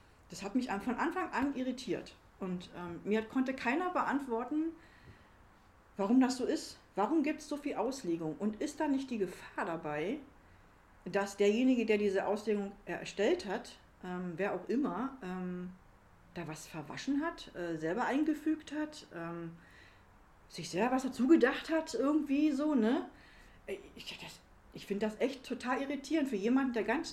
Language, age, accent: German, 50-69, German